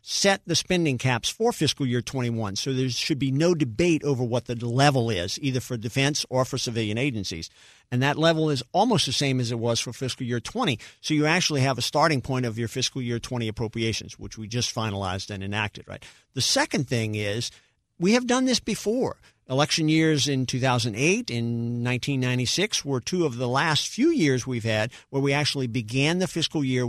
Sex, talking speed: male, 205 wpm